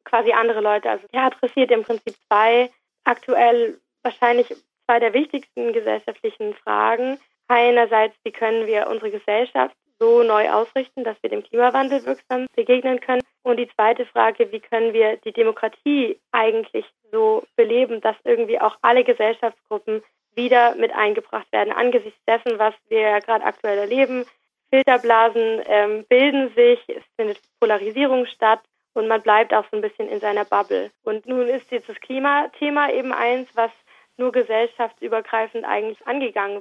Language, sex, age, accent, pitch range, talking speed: German, female, 20-39, German, 225-285 Hz, 150 wpm